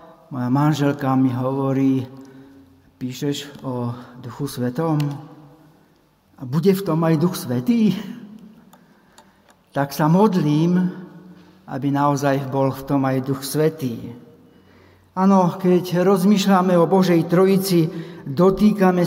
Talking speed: 105 wpm